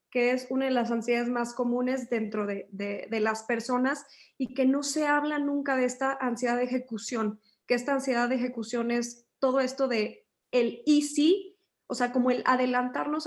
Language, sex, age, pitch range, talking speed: Spanish, female, 20-39, 230-270 Hz, 185 wpm